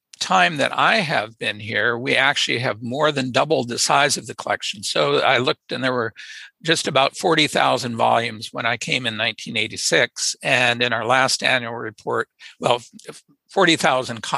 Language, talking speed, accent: English, 165 wpm, American